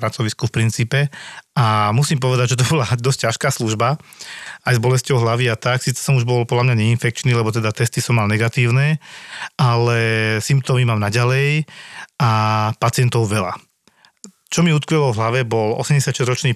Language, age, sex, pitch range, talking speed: Slovak, 40-59, male, 110-135 Hz, 165 wpm